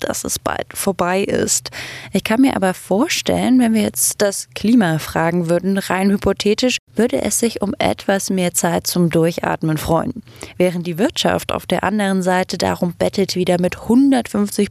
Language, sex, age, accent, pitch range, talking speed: German, female, 20-39, German, 175-210 Hz, 165 wpm